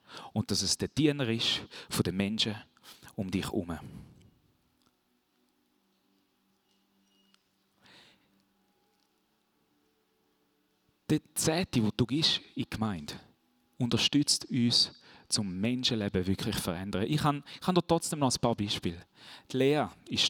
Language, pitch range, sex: German, 110-155 Hz, male